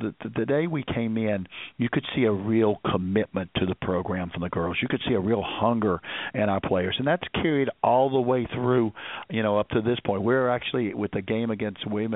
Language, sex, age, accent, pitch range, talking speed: English, male, 50-69, American, 100-115 Hz, 230 wpm